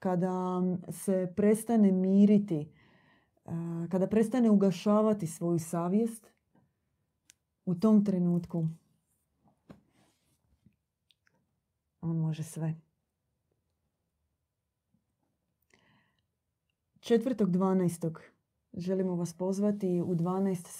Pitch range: 170-195 Hz